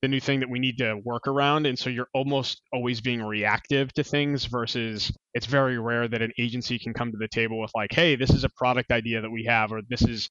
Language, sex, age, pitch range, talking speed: English, male, 20-39, 115-135 Hz, 255 wpm